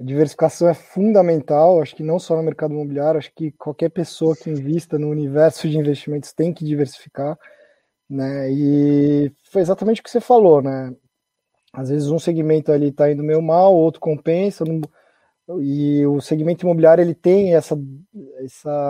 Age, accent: 20-39, Brazilian